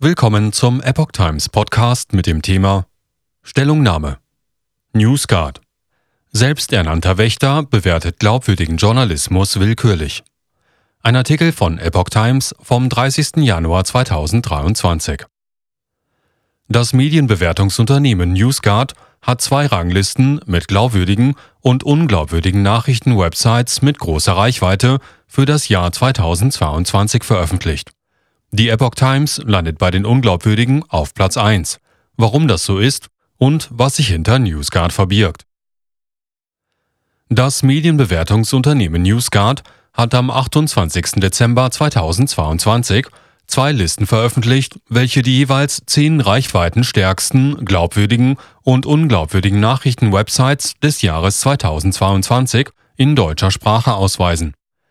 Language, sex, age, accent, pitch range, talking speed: German, male, 40-59, German, 95-130 Hz, 100 wpm